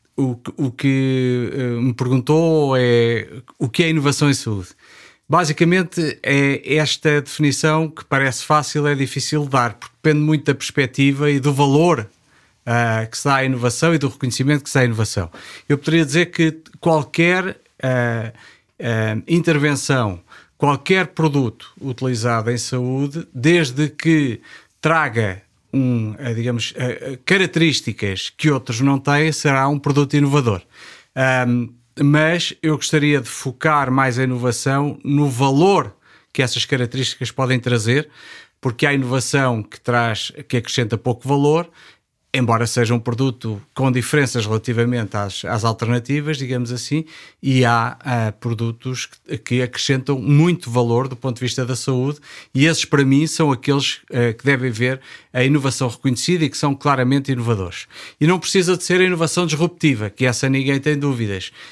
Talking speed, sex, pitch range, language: 145 wpm, male, 120-150 Hz, Portuguese